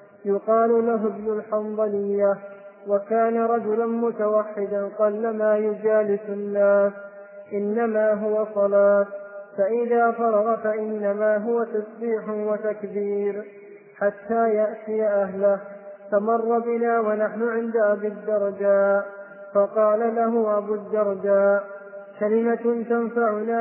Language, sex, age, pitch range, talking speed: Arabic, male, 20-39, 200-220 Hz, 85 wpm